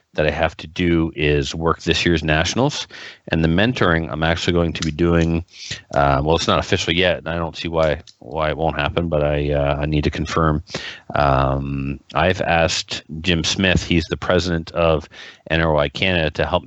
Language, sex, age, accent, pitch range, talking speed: English, male, 40-59, American, 75-85 Hz, 195 wpm